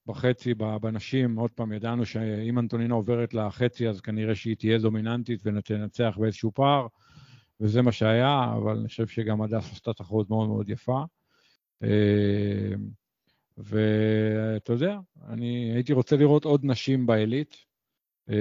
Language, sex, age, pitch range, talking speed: Hebrew, male, 50-69, 110-125 Hz, 125 wpm